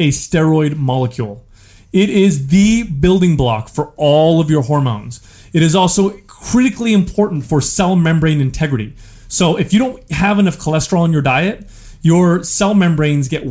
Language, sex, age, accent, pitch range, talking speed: English, male, 30-49, American, 130-170 Hz, 160 wpm